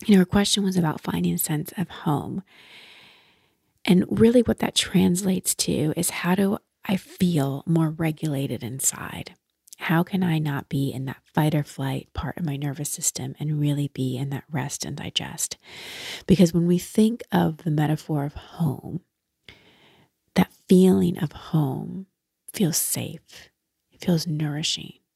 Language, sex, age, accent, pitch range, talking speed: English, female, 30-49, American, 145-185 Hz, 155 wpm